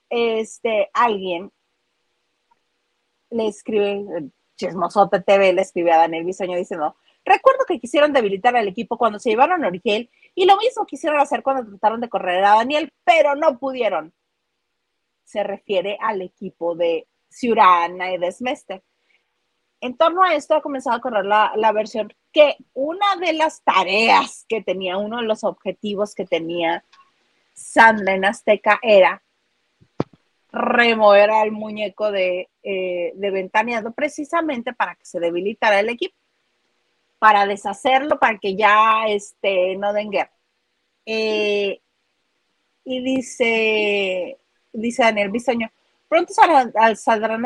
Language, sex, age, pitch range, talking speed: Spanish, female, 30-49, 195-265 Hz, 130 wpm